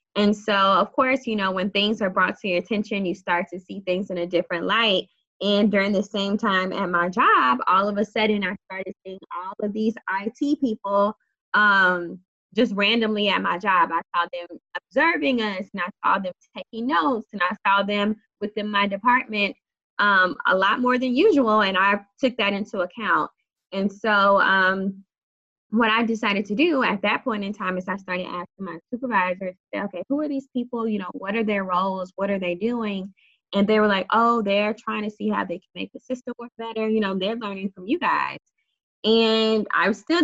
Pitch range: 185-225 Hz